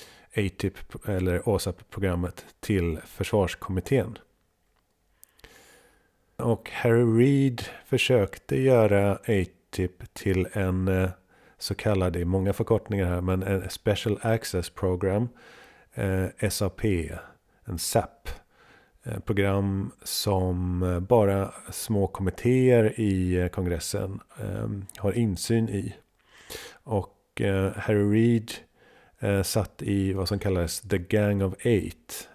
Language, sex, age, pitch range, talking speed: Swedish, male, 40-59, 90-105 Hz, 95 wpm